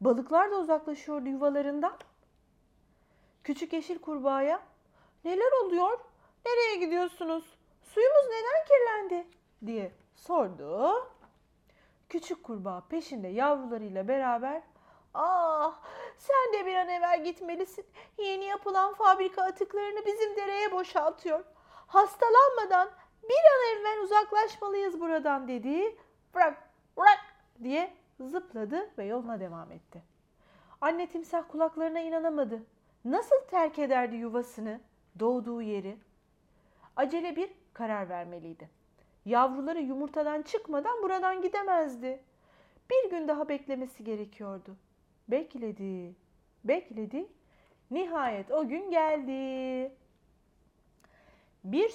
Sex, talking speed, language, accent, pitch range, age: female, 95 wpm, Turkish, native, 255-375 Hz, 40-59